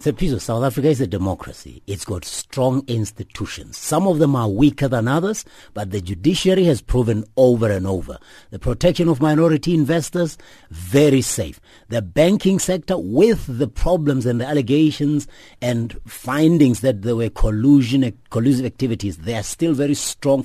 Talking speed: 165 wpm